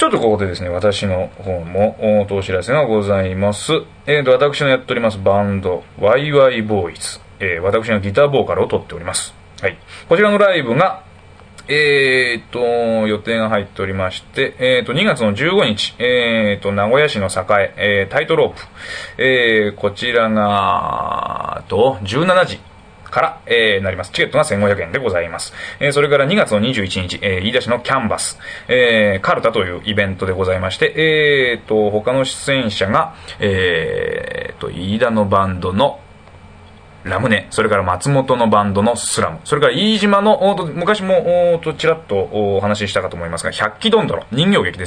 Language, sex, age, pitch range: Japanese, male, 20-39, 100-155 Hz